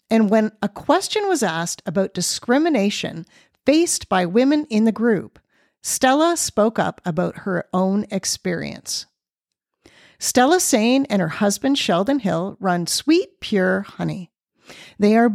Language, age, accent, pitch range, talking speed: English, 50-69, American, 190-270 Hz, 135 wpm